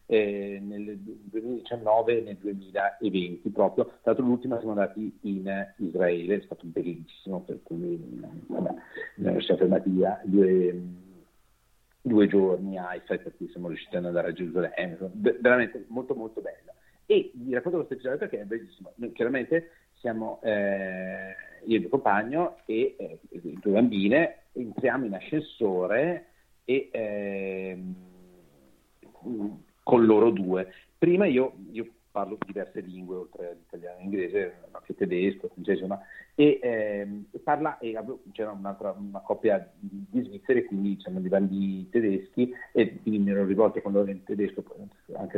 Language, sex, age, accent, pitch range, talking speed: Italian, male, 50-69, native, 95-120 Hz, 145 wpm